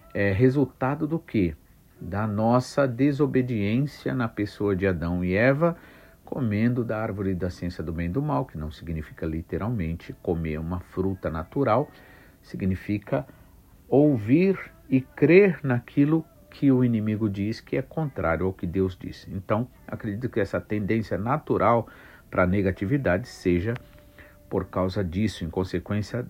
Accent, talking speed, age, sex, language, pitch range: Brazilian, 140 wpm, 60-79, male, Portuguese, 95-140 Hz